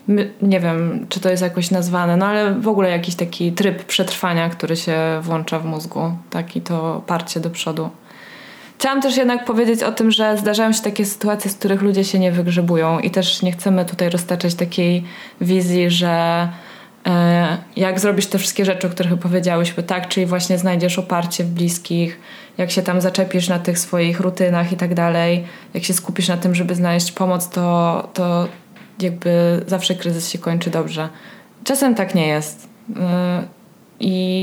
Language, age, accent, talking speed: Polish, 20-39, native, 175 wpm